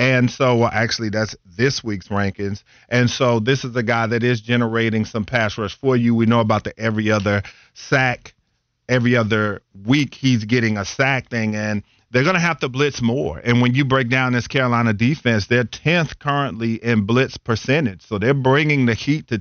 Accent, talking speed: American, 200 wpm